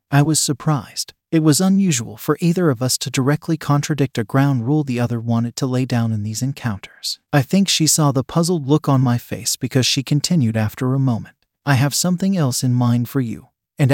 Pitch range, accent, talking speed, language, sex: 120-155 Hz, American, 215 wpm, English, male